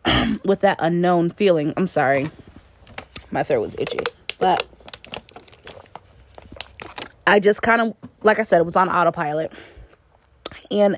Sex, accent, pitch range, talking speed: female, American, 170-210 Hz, 120 wpm